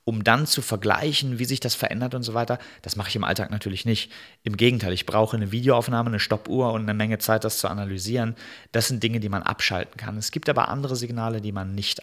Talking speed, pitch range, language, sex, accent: 240 wpm, 105-120 Hz, German, male, German